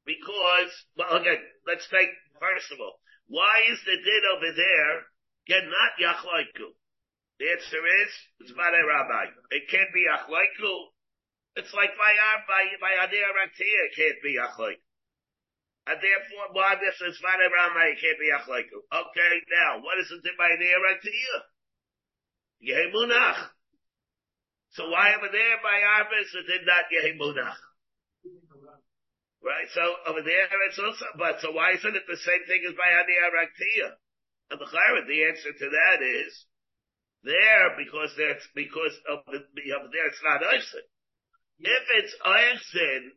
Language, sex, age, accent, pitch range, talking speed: English, male, 50-69, American, 165-210 Hz, 155 wpm